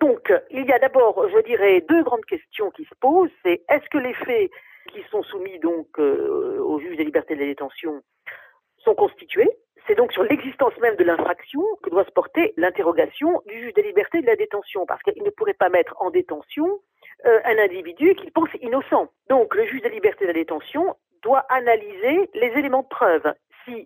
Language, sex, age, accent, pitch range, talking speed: French, female, 40-59, French, 265-420 Hz, 200 wpm